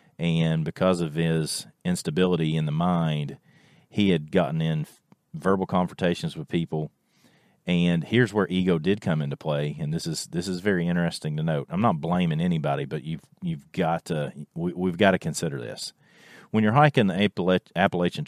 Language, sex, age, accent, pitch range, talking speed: English, male, 40-59, American, 80-110 Hz, 175 wpm